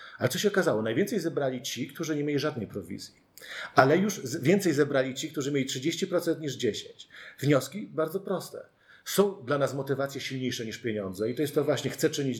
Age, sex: 40-59, male